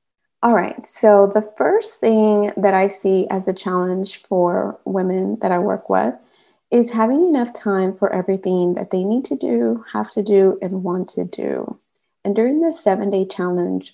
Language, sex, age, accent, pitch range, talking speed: English, female, 30-49, American, 185-225 Hz, 175 wpm